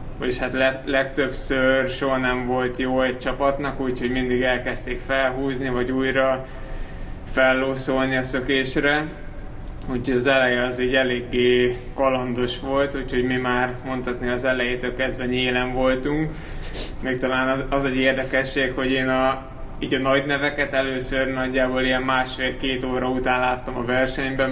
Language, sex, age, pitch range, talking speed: Hungarian, male, 20-39, 125-135 Hz, 135 wpm